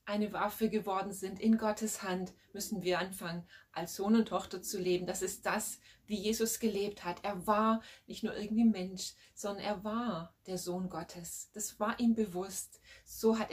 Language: German